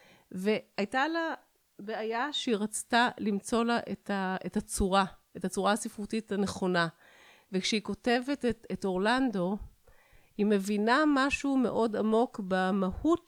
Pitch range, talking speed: 190-235 Hz, 120 wpm